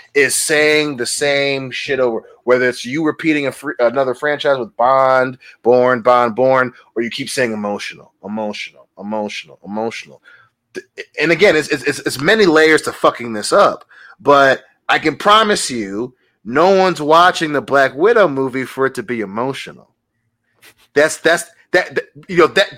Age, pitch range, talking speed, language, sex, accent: 30-49, 125-170 Hz, 160 wpm, English, male, American